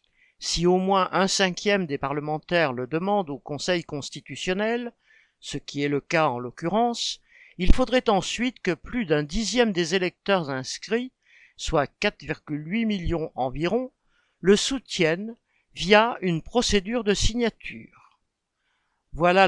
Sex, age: male, 60-79